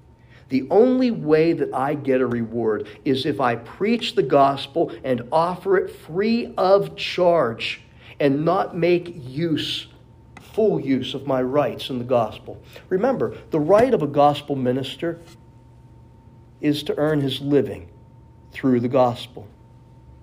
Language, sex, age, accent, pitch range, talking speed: English, male, 50-69, American, 115-145 Hz, 140 wpm